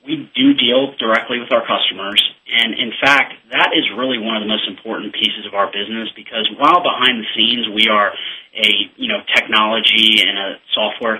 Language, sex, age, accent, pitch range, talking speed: English, male, 30-49, American, 105-125 Hz, 195 wpm